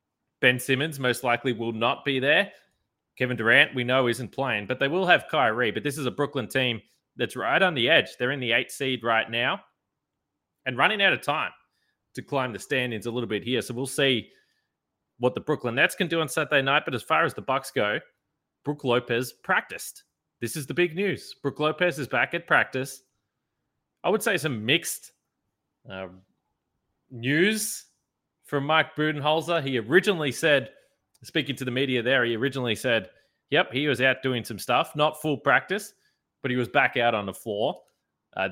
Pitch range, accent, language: 125-150 Hz, Australian, English